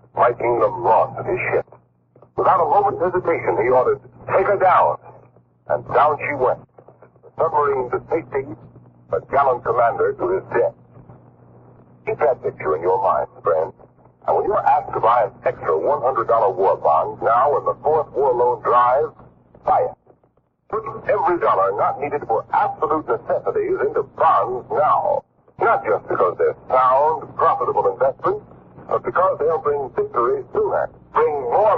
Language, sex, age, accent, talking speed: English, male, 60-79, American, 155 wpm